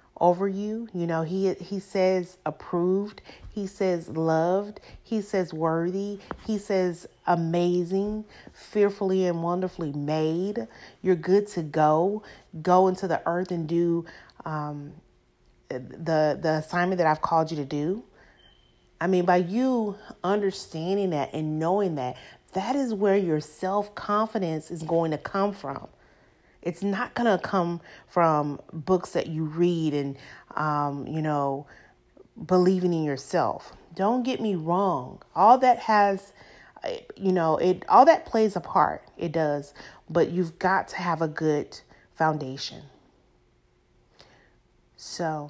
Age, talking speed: 30-49, 135 wpm